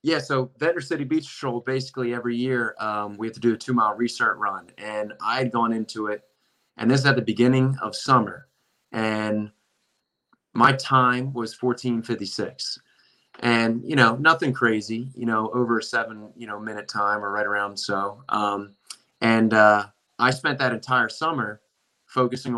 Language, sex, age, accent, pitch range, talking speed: English, male, 20-39, American, 105-125 Hz, 165 wpm